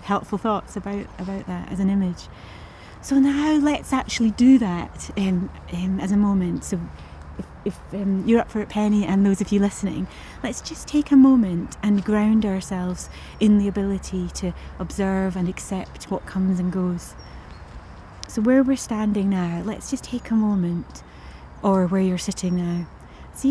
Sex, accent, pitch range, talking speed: female, British, 190-225 Hz, 175 wpm